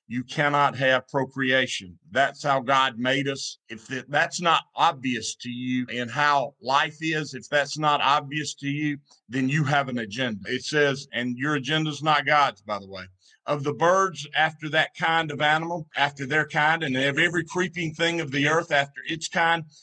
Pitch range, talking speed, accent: 135-165 Hz, 190 wpm, American